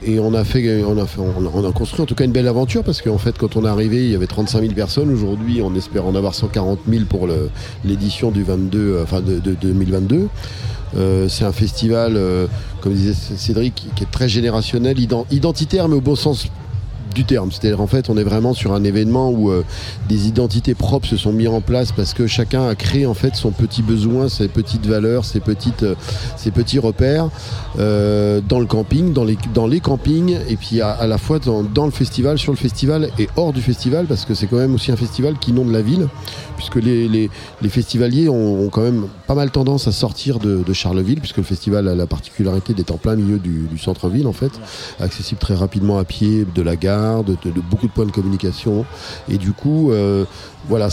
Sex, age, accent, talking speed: male, 40-59, French, 225 wpm